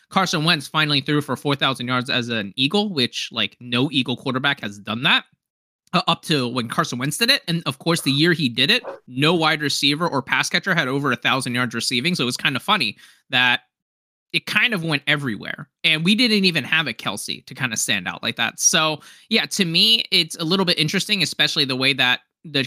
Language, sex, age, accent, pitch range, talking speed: English, male, 20-39, American, 135-185 Hz, 225 wpm